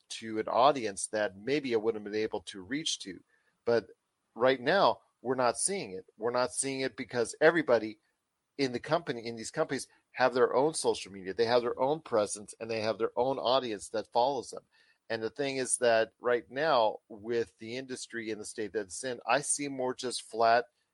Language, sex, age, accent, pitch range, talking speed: English, male, 40-59, American, 110-130 Hz, 205 wpm